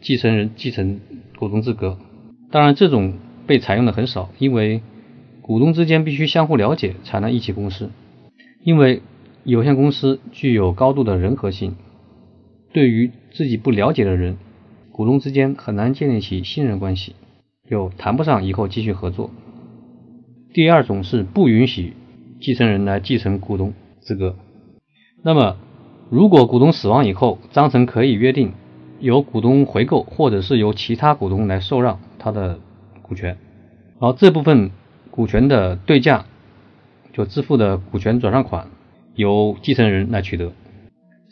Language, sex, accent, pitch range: Chinese, male, native, 100-130 Hz